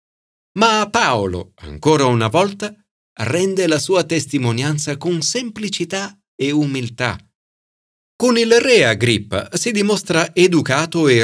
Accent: native